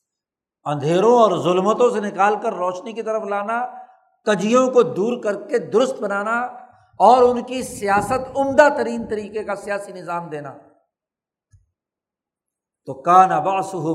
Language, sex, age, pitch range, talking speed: Urdu, male, 60-79, 180-245 Hz, 140 wpm